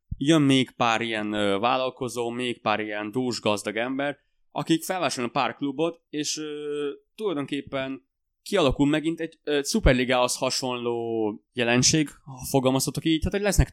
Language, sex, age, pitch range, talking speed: Hungarian, male, 20-39, 115-140 Hz, 140 wpm